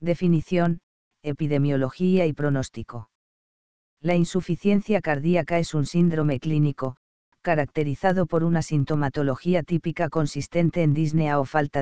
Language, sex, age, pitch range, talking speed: English, female, 50-69, 140-170 Hz, 105 wpm